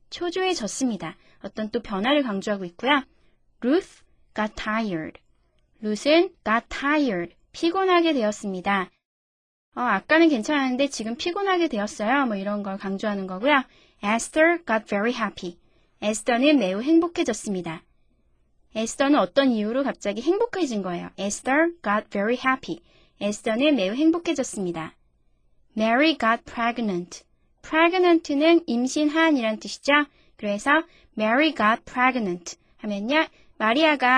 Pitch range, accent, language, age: 205-295 Hz, native, Korean, 20-39